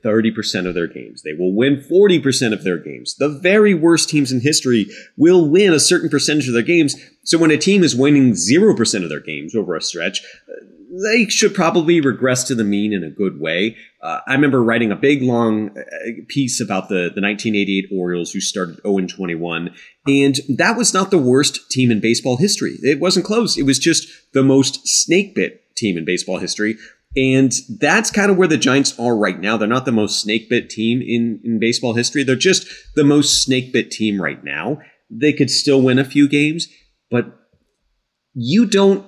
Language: English